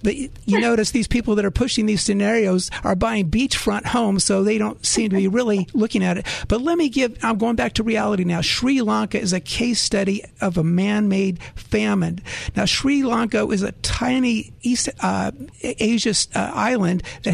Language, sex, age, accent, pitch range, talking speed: English, male, 50-69, American, 195-230 Hz, 195 wpm